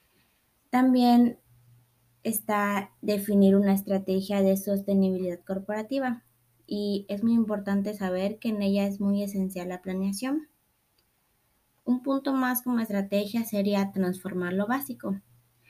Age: 20-39